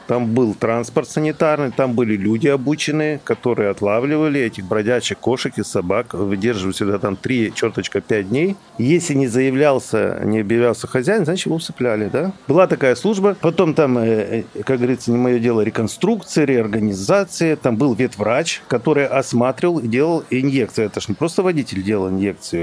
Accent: native